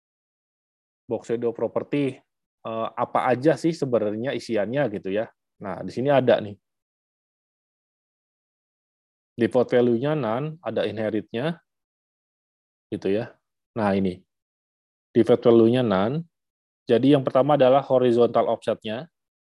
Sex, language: male, Indonesian